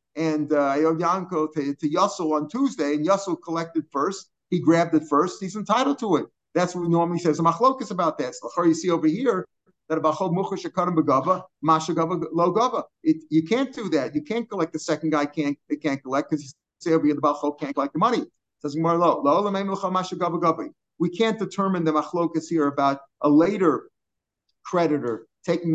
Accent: American